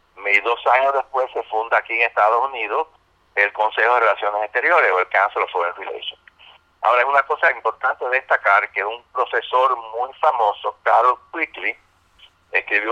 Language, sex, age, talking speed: Spanish, male, 60-79, 165 wpm